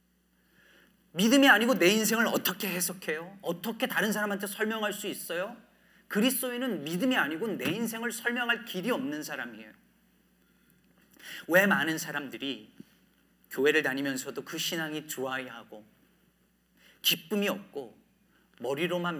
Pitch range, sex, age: 140-205 Hz, male, 40-59